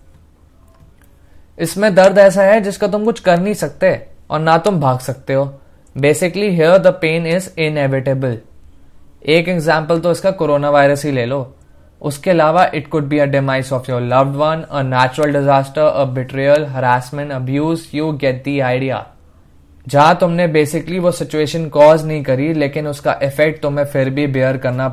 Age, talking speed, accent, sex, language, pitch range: 20-39, 155 wpm, native, male, Hindi, 130-165 Hz